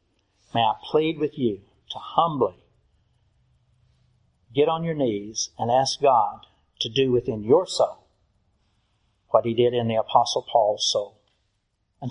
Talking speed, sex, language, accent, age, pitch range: 140 wpm, male, English, American, 60-79, 100-130 Hz